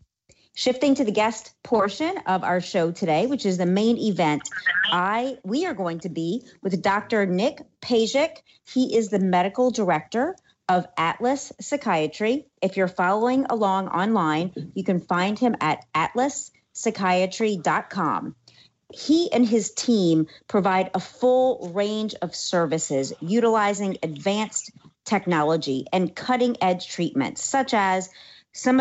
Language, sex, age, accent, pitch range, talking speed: English, female, 40-59, American, 170-225 Hz, 130 wpm